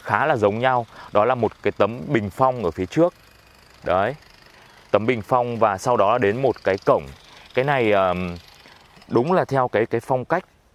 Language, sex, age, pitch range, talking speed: Vietnamese, male, 20-39, 95-125 Hz, 190 wpm